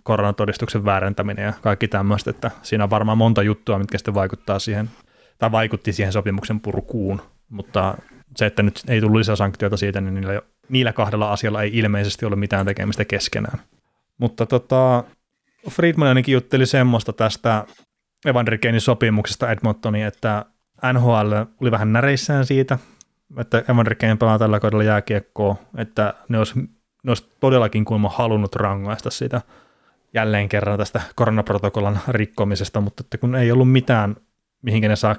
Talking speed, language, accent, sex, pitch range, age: 140 wpm, Finnish, native, male, 100-115 Hz, 20-39